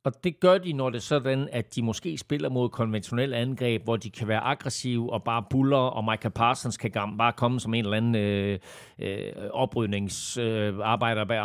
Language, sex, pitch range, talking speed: Danish, male, 110-130 Hz, 190 wpm